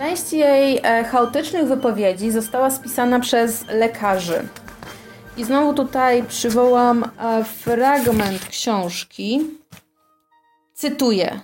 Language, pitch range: Polish, 220-265 Hz